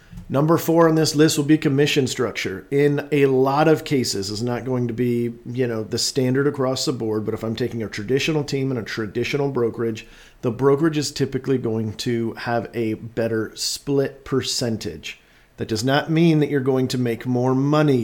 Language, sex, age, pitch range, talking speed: English, male, 40-59, 110-135 Hz, 195 wpm